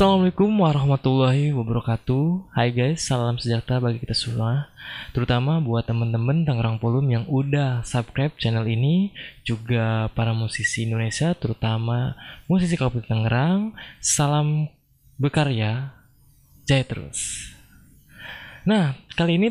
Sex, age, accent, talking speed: male, 20-39, native, 110 wpm